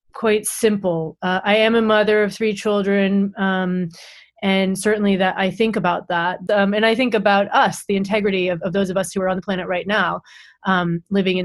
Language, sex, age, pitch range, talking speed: English, female, 30-49, 190-220 Hz, 215 wpm